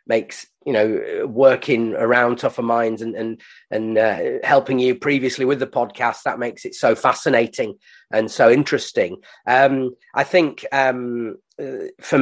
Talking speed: 145 wpm